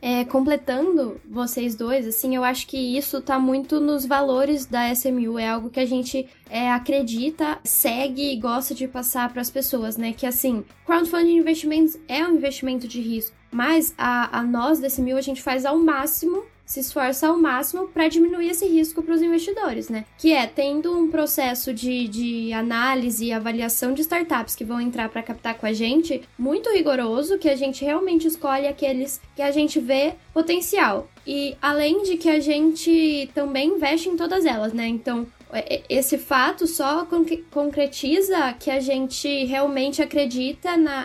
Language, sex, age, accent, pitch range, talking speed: Portuguese, female, 10-29, Brazilian, 250-315 Hz, 175 wpm